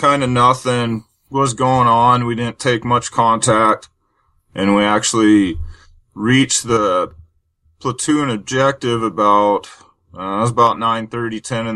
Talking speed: 135 wpm